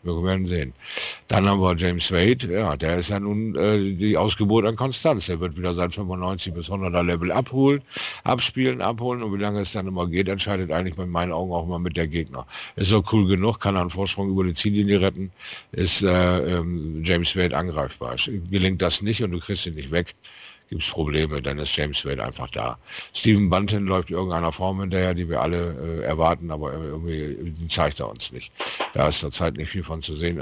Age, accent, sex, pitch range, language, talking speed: 50-69, German, male, 75-95 Hz, German, 210 wpm